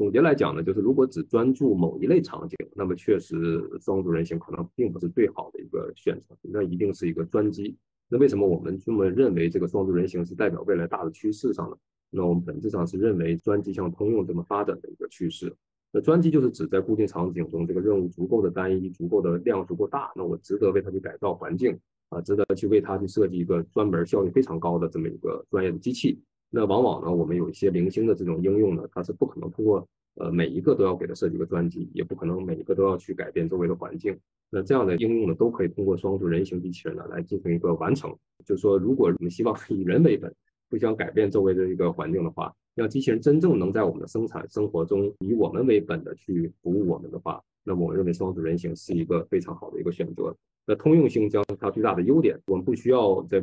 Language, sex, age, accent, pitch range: Chinese, male, 20-39, native, 85-100 Hz